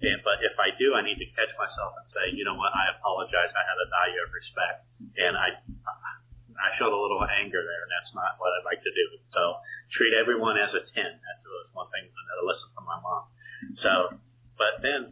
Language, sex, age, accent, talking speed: English, male, 40-59, American, 225 wpm